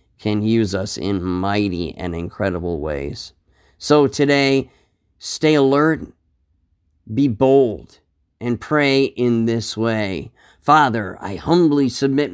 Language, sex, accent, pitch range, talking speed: English, male, American, 95-135 Hz, 110 wpm